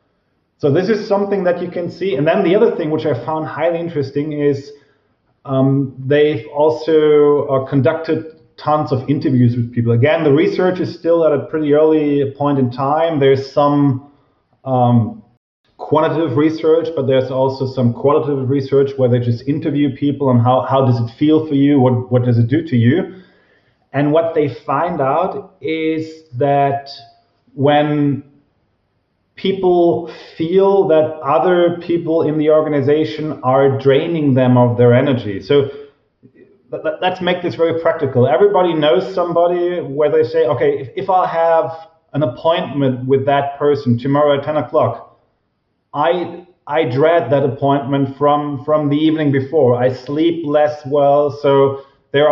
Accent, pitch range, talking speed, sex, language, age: German, 135-160 Hz, 155 wpm, male, English, 30-49